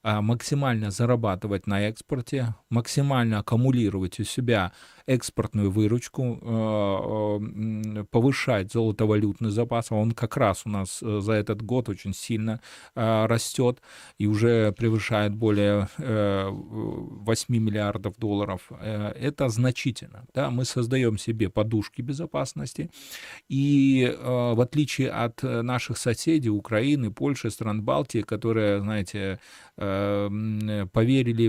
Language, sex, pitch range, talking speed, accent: Russian, male, 105-125 Hz, 95 wpm, native